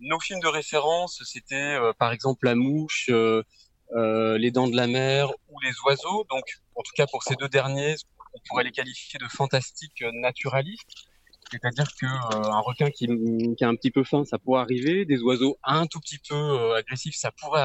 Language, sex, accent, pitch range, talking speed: French, male, French, 120-155 Hz, 200 wpm